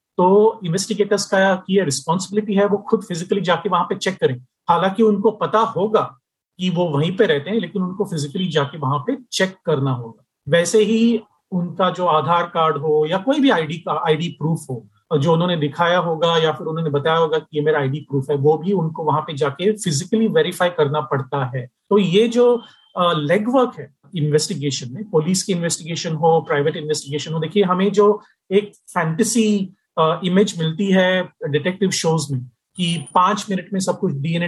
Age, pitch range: 40-59, 155-205 Hz